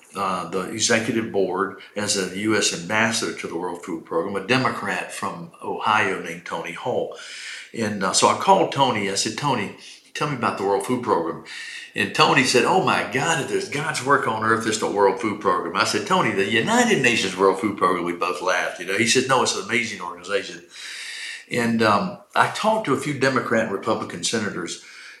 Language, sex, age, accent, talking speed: English, male, 50-69, American, 200 wpm